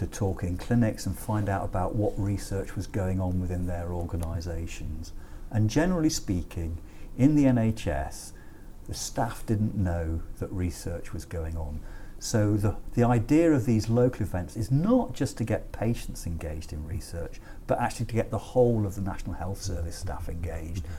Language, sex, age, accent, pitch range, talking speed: English, male, 50-69, British, 90-115 Hz, 175 wpm